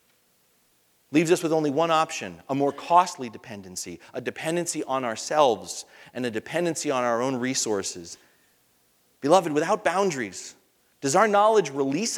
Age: 40-59